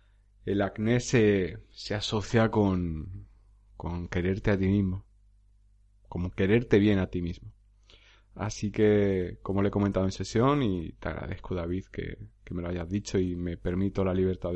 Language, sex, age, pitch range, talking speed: Spanish, male, 30-49, 95-105 Hz, 165 wpm